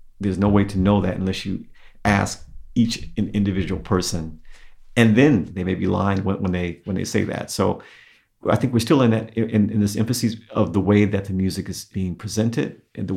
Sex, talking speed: male, 210 wpm